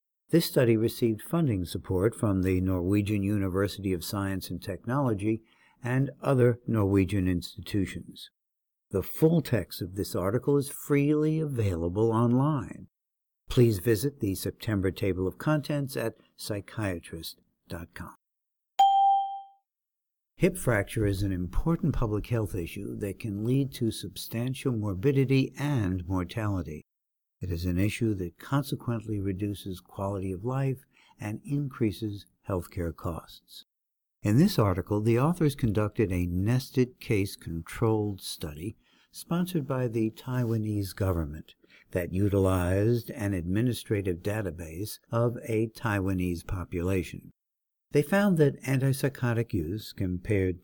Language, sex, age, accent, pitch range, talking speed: English, male, 60-79, American, 95-130 Hz, 115 wpm